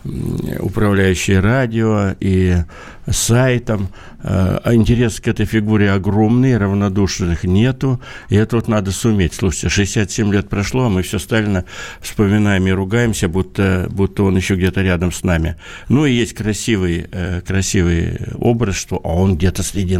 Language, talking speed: Russian, 140 wpm